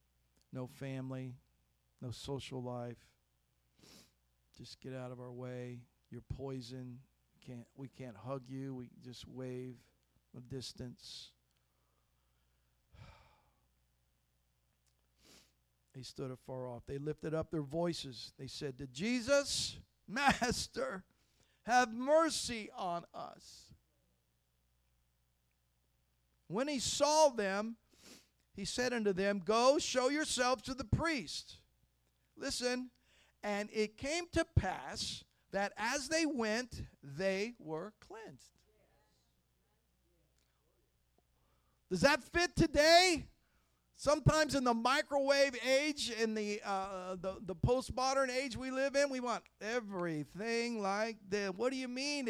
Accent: American